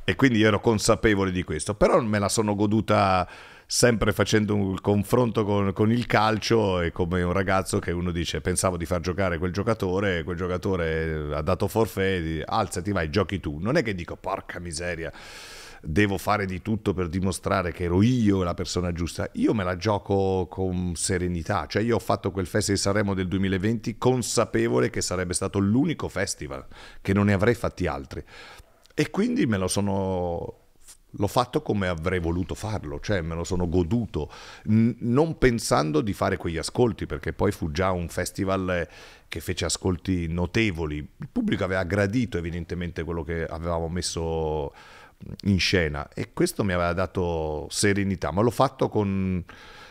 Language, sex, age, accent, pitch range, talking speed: Italian, male, 40-59, native, 85-105 Hz, 170 wpm